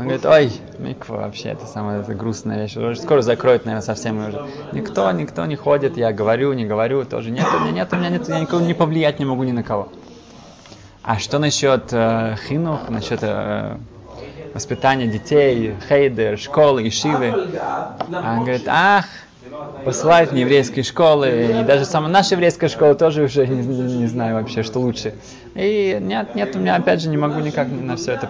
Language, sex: Russian, male